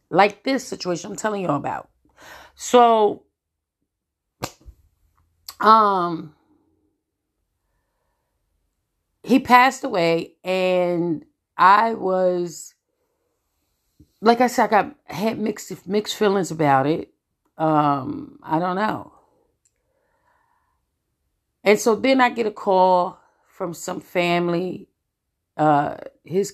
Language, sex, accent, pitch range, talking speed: English, female, American, 155-220 Hz, 95 wpm